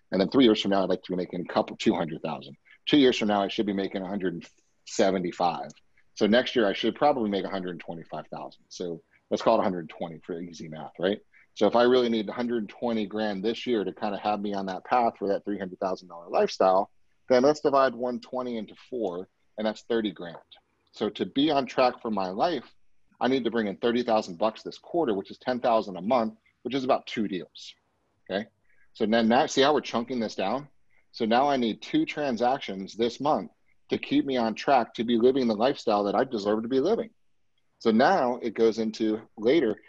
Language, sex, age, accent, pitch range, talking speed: English, male, 30-49, American, 95-120 Hz, 205 wpm